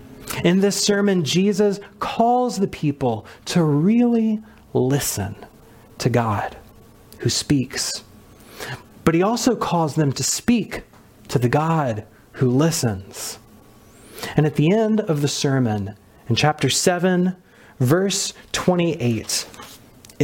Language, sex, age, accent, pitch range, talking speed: English, male, 30-49, American, 120-195 Hz, 115 wpm